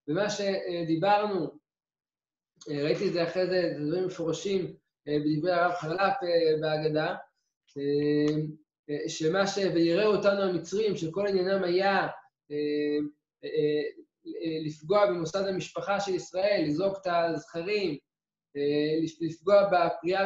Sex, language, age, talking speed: male, Hebrew, 20-39, 95 wpm